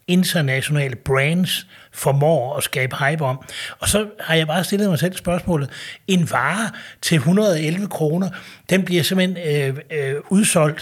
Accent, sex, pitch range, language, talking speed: native, male, 135-175 Hz, Danish, 150 wpm